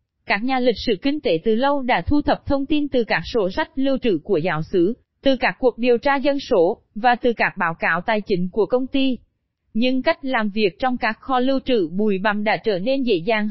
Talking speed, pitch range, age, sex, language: 245 wpm, 205-260 Hz, 20-39, female, Vietnamese